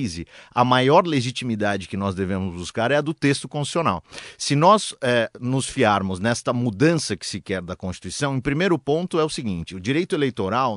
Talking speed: 185 wpm